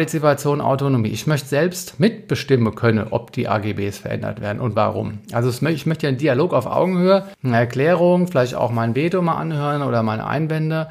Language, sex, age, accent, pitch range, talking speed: German, male, 50-69, German, 115-155 Hz, 175 wpm